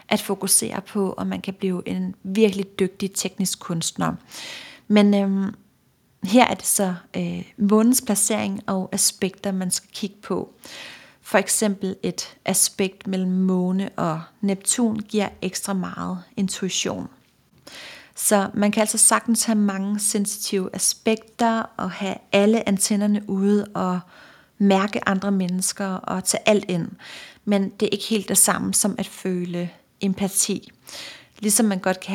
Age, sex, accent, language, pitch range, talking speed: 40-59, female, native, Danish, 185-215 Hz, 140 wpm